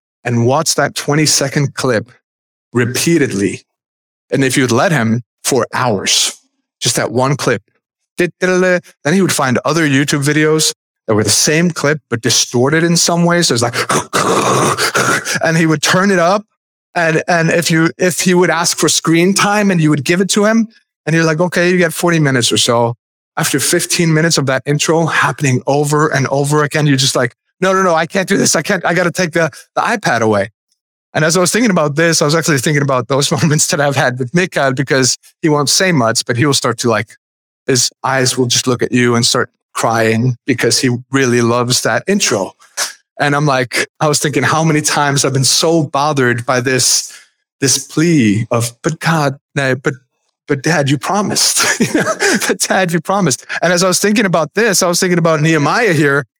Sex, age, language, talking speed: male, 30-49, English, 205 wpm